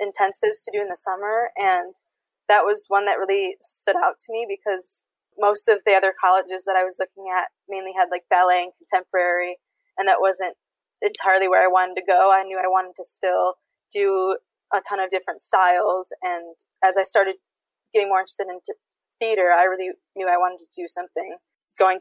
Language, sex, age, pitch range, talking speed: English, female, 20-39, 185-210 Hz, 195 wpm